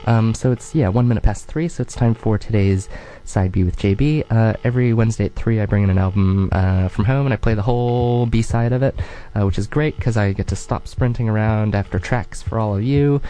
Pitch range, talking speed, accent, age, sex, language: 100-125 Hz, 250 wpm, American, 20-39, male, English